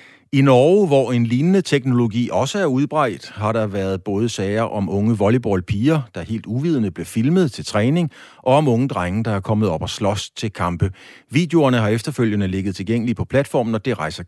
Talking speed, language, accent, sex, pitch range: 195 wpm, Danish, native, male, 100-130 Hz